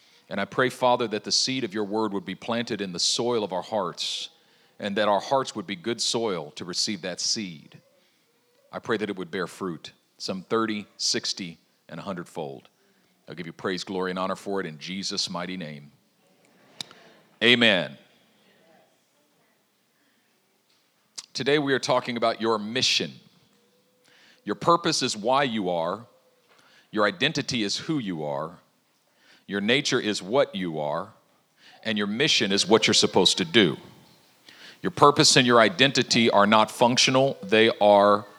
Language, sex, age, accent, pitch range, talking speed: English, male, 40-59, American, 95-125 Hz, 160 wpm